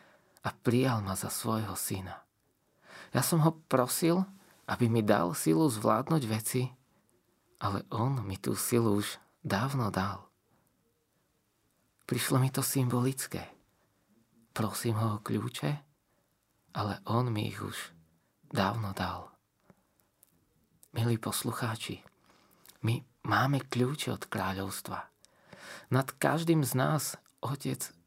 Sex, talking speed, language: male, 110 wpm, Slovak